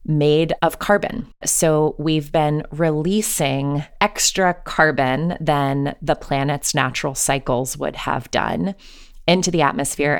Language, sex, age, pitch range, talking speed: English, female, 20-39, 140-170 Hz, 120 wpm